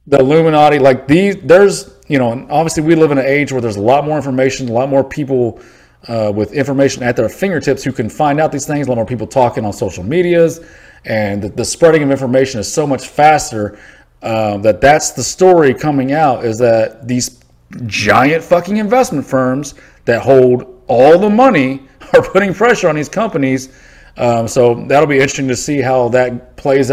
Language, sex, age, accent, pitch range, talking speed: English, male, 30-49, American, 110-140 Hz, 195 wpm